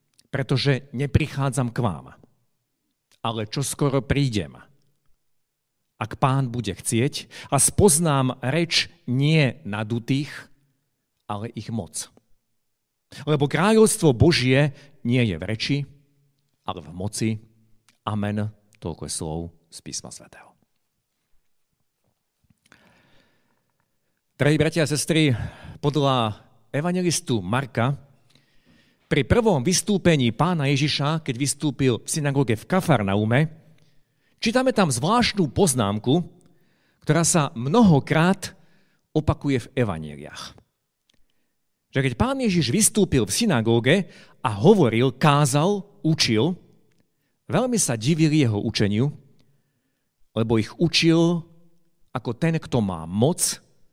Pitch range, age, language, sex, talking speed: 115-160 Hz, 50-69, Slovak, male, 100 wpm